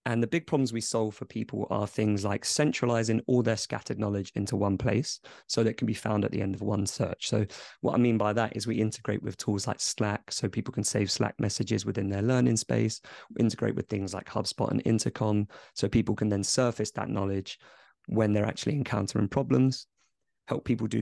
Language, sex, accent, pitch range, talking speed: English, male, British, 100-120 Hz, 215 wpm